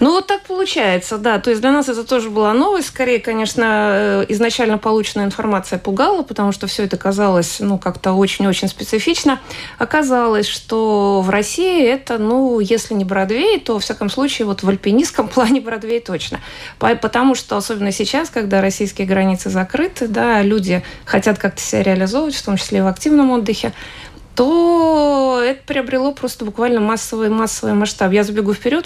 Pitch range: 195-245 Hz